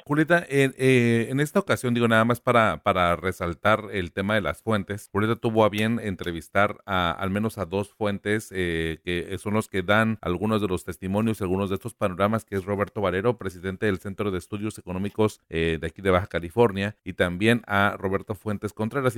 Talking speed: 200 wpm